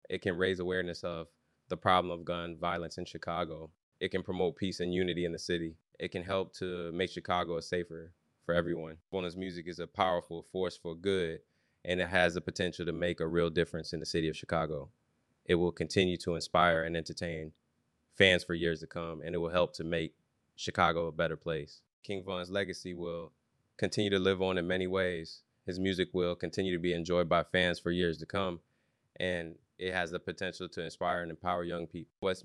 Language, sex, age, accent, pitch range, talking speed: English, male, 20-39, American, 85-90 Hz, 205 wpm